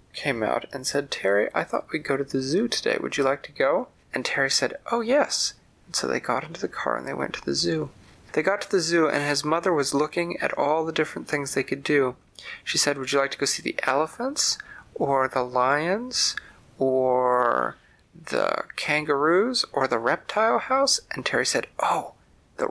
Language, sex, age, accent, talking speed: English, male, 40-59, American, 210 wpm